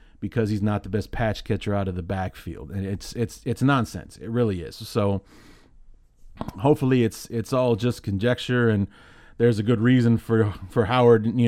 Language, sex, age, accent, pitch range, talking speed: English, male, 30-49, American, 100-120 Hz, 185 wpm